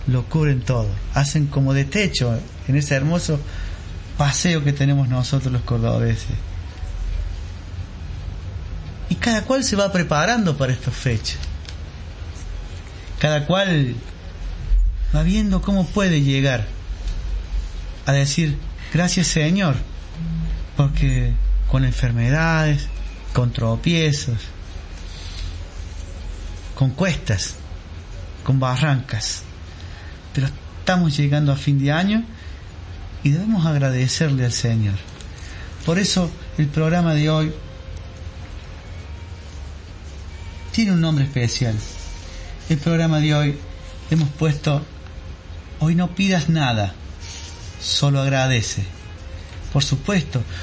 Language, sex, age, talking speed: Spanish, male, 30-49, 95 wpm